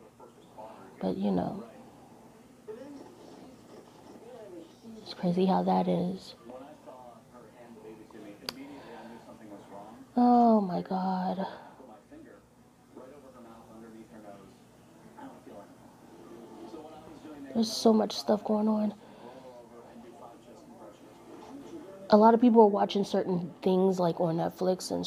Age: 30-49